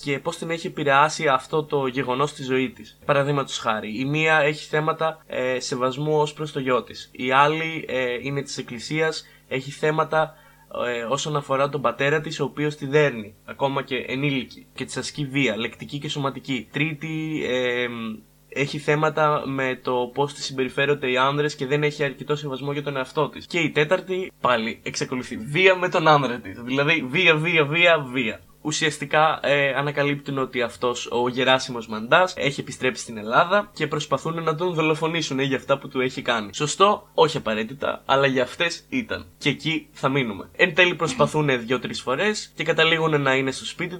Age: 20-39